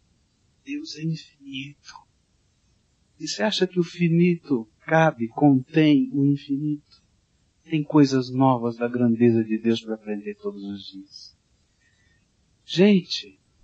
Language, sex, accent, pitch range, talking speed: Portuguese, male, Brazilian, 125-175 Hz, 115 wpm